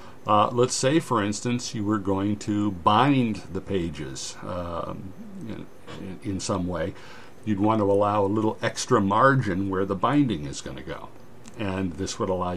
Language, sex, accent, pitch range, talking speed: English, male, American, 100-125 Hz, 170 wpm